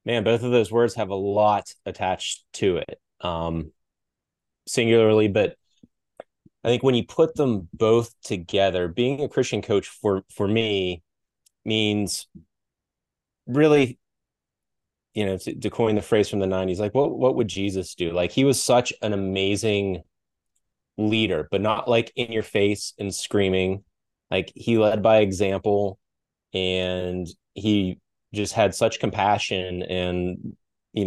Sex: male